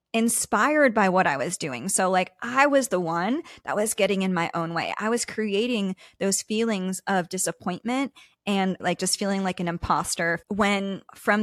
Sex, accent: female, American